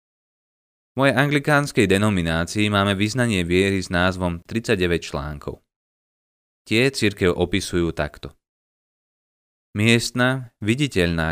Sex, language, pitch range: male, Slovak, 90-110 Hz